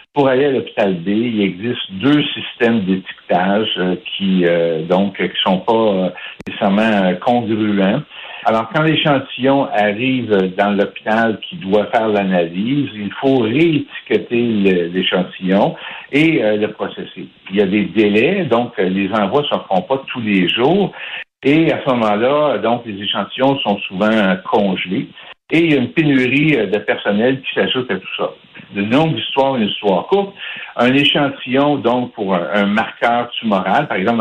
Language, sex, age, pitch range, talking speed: French, male, 60-79, 100-130 Hz, 160 wpm